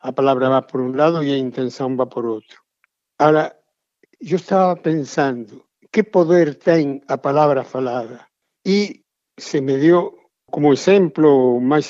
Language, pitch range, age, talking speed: Portuguese, 145-180 Hz, 60-79, 155 wpm